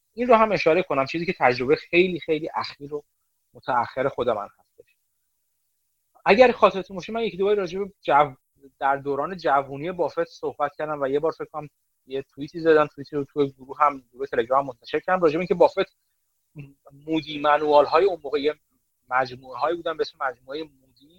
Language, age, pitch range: Persian, 30-49, 140-190 Hz